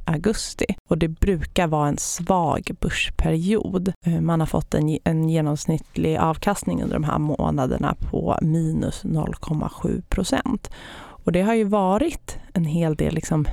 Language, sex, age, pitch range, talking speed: Swedish, female, 30-49, 150-180 Hz, 125 wpm